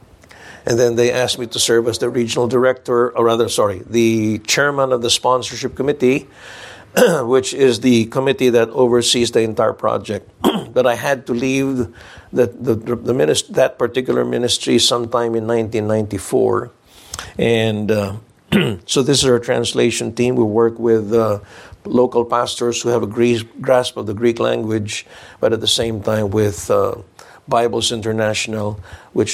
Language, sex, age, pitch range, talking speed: English, male, 50-69, 110-125 Hz, 145 wpm